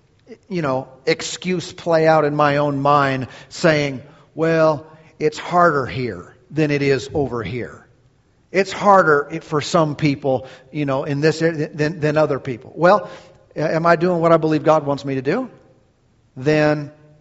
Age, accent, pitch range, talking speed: 40-59, American, 135-165 Hz, 160 wpm